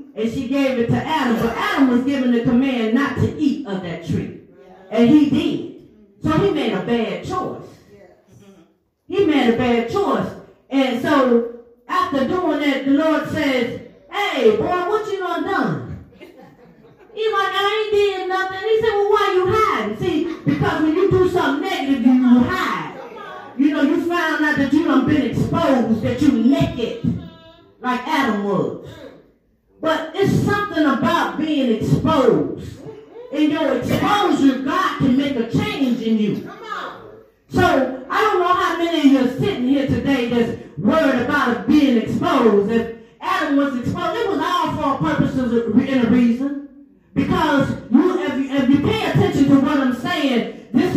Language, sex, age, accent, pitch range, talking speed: English, female, 30-49, American, 240-335 Hz, 165 wpm